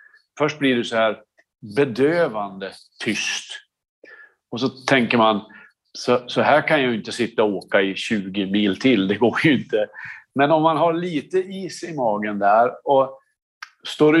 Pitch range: 120-155 Hz